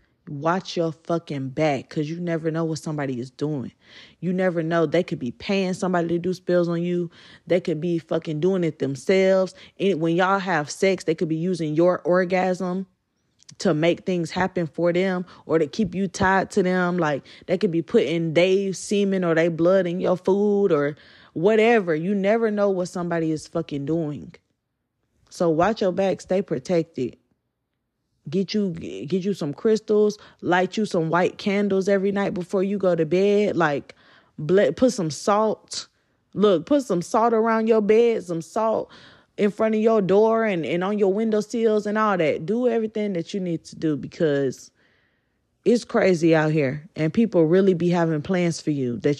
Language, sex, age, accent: English, female, 20-39, American